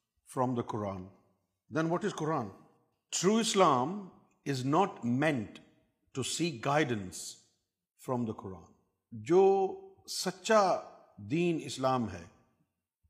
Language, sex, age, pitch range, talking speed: Urdu, male, 50-69, 130-175 Hz, 80 wpm